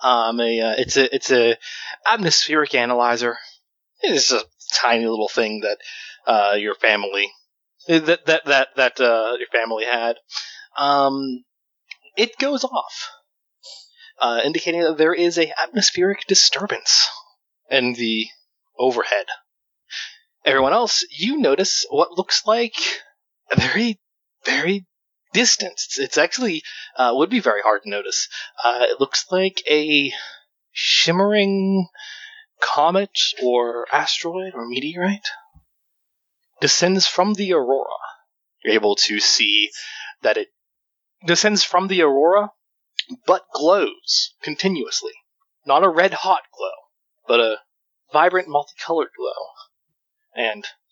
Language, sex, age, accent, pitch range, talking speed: English, male, 20-39, American, 120-200 Hz, 115 wpm